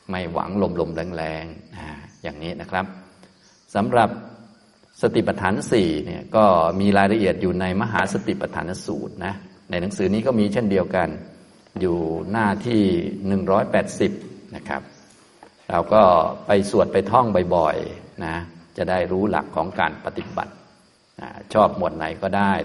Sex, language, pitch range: male, Thai, 85-100 Hz